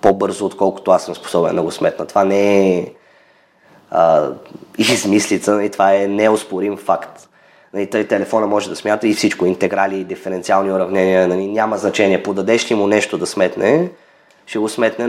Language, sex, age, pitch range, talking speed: Bulgarian, male, 20-39, 100-140 Hz, 155 wpm